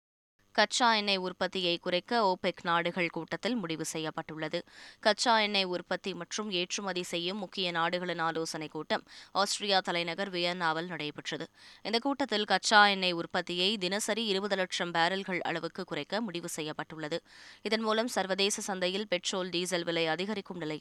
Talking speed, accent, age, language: 130 wpm, native, 20-39, Tamil